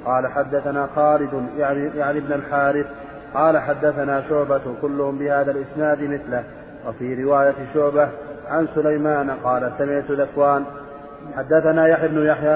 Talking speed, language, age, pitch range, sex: 120 wpm, Arabic, 30-49, 140-150 Hz, male